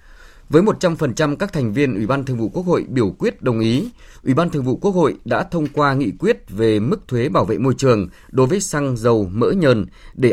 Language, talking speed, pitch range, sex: Vietnamese, 230 wpm, 115-145 Hz, male